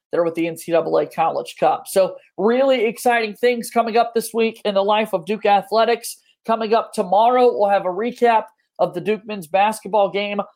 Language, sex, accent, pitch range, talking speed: English, male, American, 195-230 Hz, 190 wpm